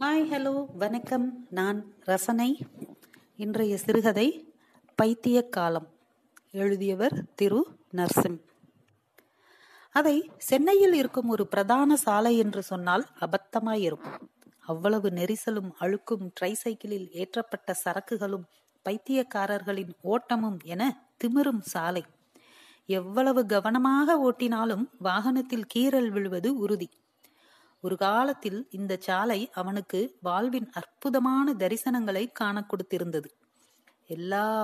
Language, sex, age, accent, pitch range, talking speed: Tamil, female, 30-49, native, 195-255 Hz, 55 wpm